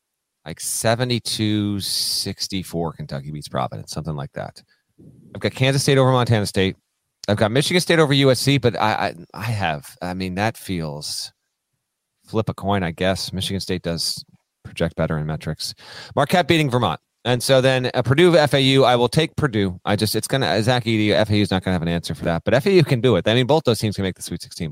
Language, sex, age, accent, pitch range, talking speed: English, male, 30-49, American, 95-125 Hz, 210 wpm